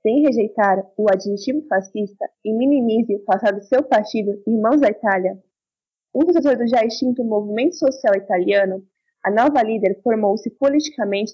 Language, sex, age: Portuguese, female, 20-39